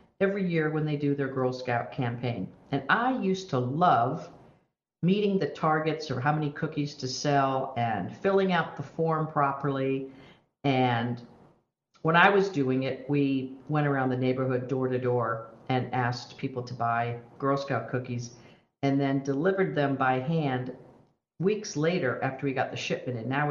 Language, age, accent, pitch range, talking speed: English, 50-69, American, 125-150 Hz, 170 wpm